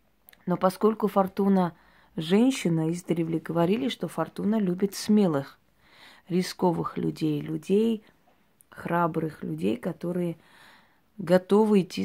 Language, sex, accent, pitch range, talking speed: Russian, female, native, 165-190 Hz, 100 wpm